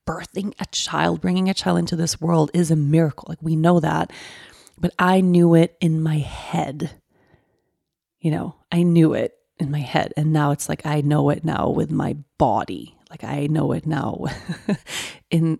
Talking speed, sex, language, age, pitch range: 185 wpm, female, English, 30-49, 150-180 Hz